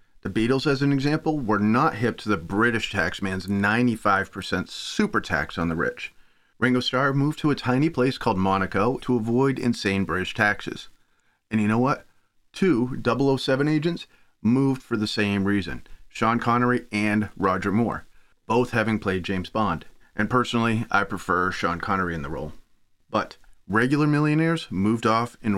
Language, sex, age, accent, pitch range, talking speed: English, male, 30-49, American, 95-125 Hz, 160 wpm